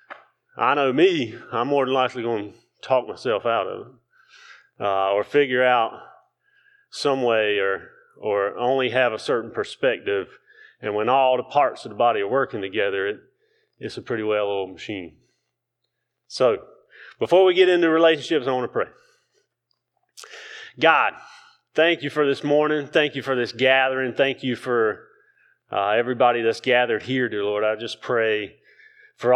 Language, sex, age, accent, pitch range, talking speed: English, male, 30-49, American, 110-160 Hz, 165 wpm